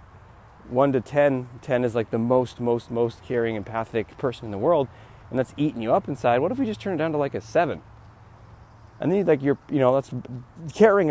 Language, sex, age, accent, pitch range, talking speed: English, male, 30-49, American, 110-165 Hz, 225 wpm